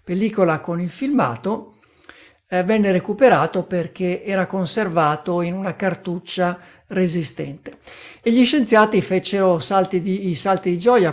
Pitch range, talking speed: 170-210 Hz, 120 wpm